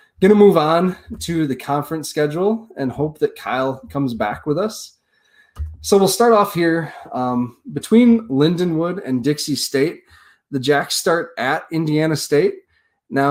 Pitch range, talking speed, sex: 125-155 Hz, 150 wpm, male